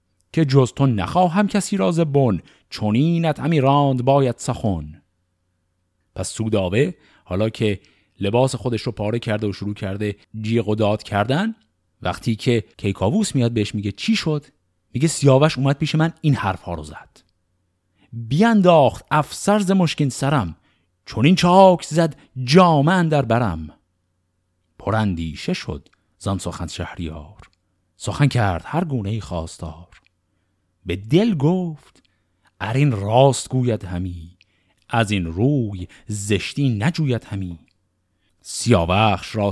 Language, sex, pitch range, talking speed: Persian, male, 90-135 Hz, 130 wpm